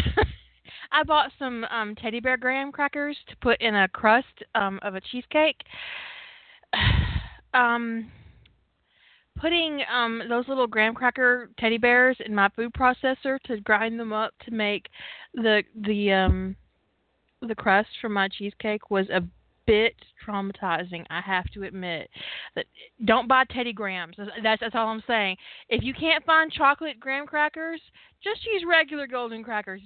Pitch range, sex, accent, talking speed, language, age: 195-265 Hz, female, American, 150 wpm, English, 20-39